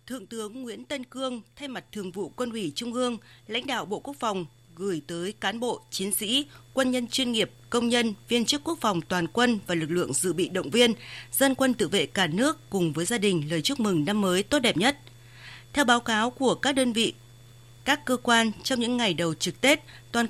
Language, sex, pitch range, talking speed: Vietnamese, female, 180-245 Hz, 230 wpm